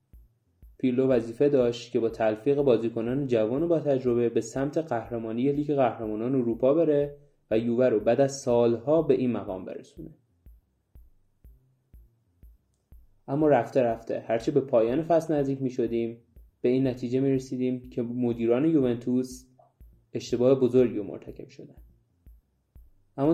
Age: 20-39